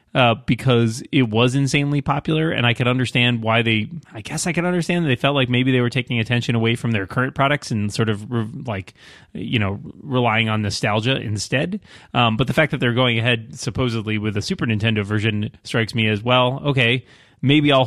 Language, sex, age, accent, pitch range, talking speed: English, male, 30-49, American, 110-135 Hz, 210 wpm